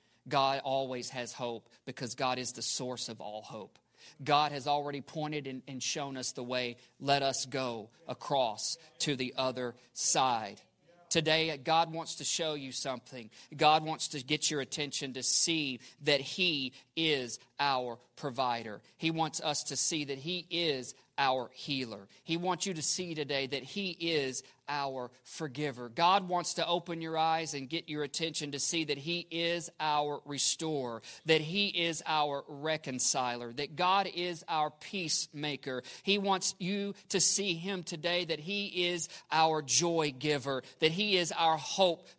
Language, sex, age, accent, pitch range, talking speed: English, male, 40-59, American, 135-175 Hz, 165 wpm